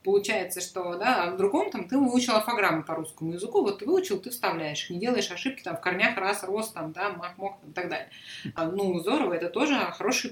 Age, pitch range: 30-49, 190-250 Hz